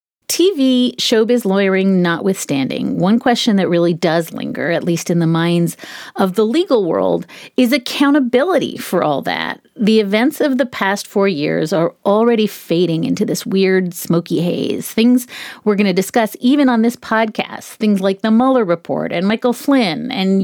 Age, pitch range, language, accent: 30-49, 180-250 Hz, English, American